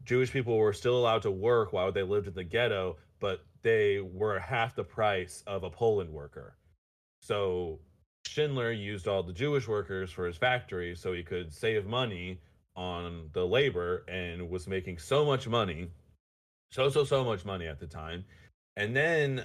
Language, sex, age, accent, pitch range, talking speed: English, male, 30-49, American, 95-125 Hz, 175 wpm